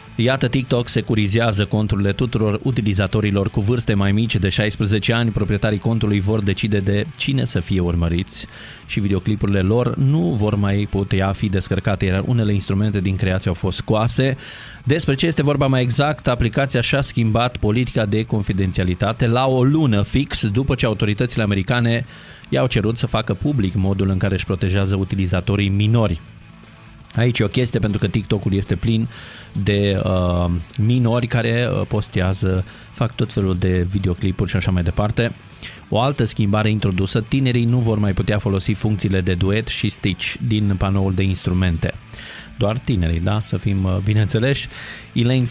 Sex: male